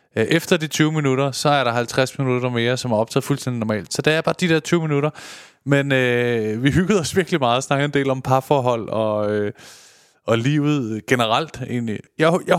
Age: 20-39